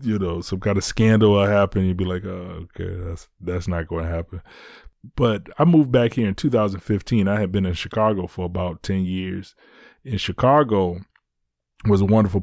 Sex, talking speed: male, 200 wpm